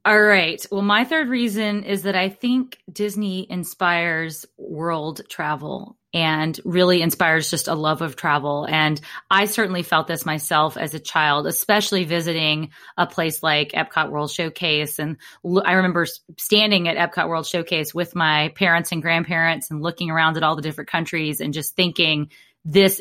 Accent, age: American, 20-39